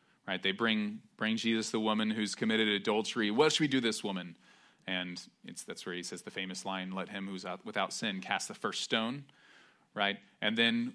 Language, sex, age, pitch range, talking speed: English, male, 30-49, 105-160 Hz, 210 wpm